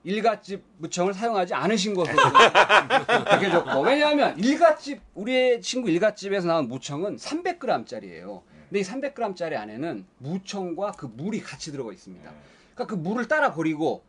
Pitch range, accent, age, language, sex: 165-250 Hz, native, 40-59, Korean, male